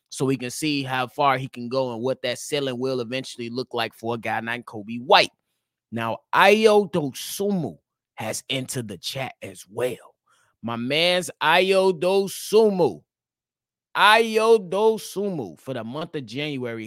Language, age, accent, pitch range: English, 30-49, American, 130-175 Hz